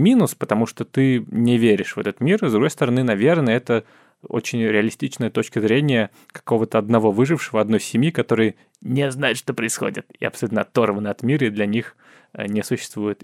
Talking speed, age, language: 170 wpm, 20-39, Russian